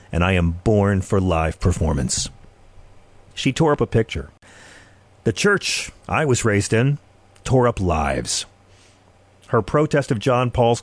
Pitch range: 95-135 Hz